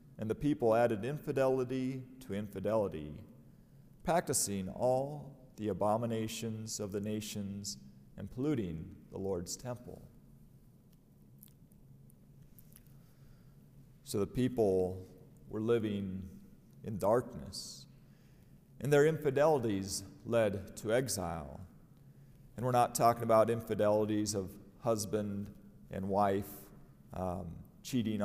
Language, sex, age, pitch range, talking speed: English, male, 40-59, 100-120 Hz, 90 wpm